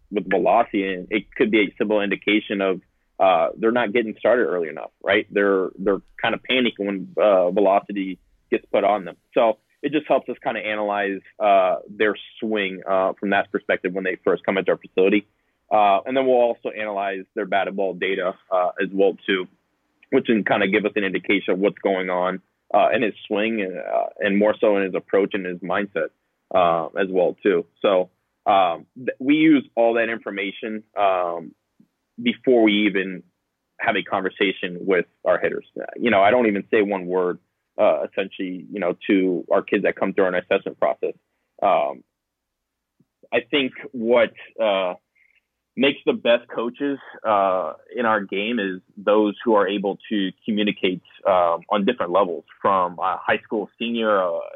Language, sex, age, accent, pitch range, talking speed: English, male, 20-39, American, 95-120 Hz, 180 wpm